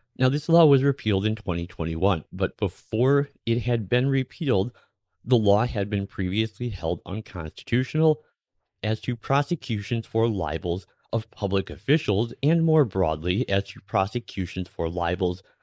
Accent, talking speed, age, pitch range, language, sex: American, 140 wpm, 30-49, 90-120 Hz, English, male